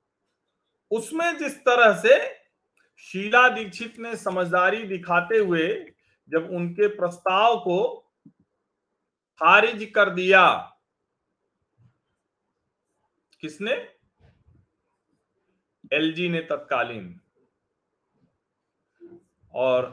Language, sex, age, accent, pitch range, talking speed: Hindi, male, 40-59, native, 140-190 Hz, 65 wpm